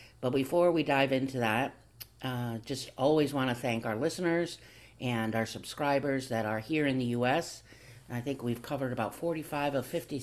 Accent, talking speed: American, 175 wpm